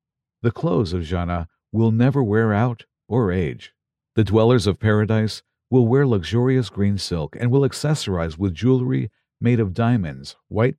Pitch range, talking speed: 90-120 Hz, 155 wpm